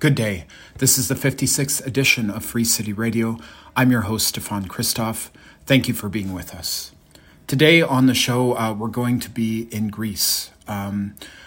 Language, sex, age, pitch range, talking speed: English, male, 40-59, 105-125 Hz, 180 wpm